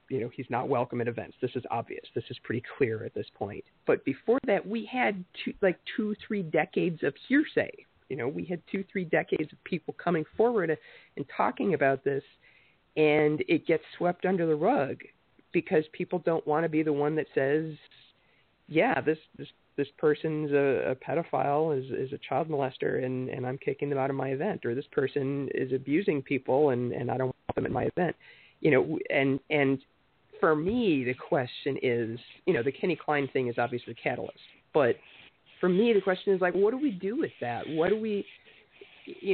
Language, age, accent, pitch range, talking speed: English, 40-59, American, 140-180 Hz, 205 wpm